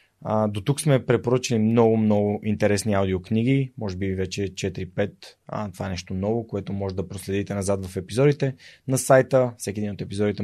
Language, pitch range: Bulgarian, 100-130 Hz